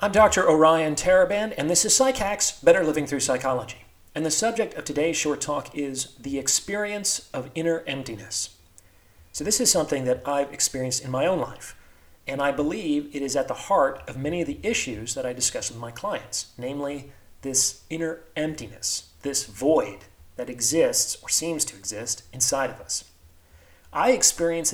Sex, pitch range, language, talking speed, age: male, 120-155 Hz, English, 175 wpm, 40-59